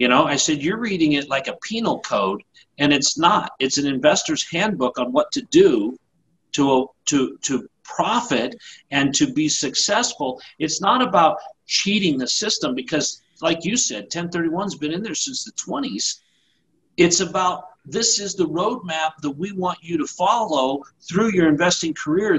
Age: 50-69